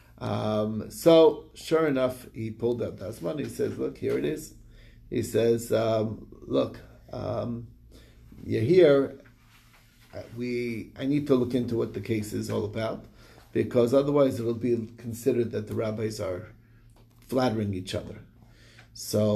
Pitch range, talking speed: 105-125 Hz, 150 wpm